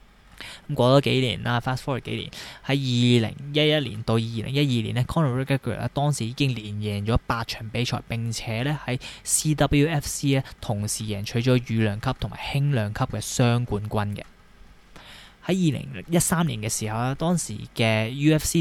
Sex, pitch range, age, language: male, 110-140 Hz, 20-39, Chinese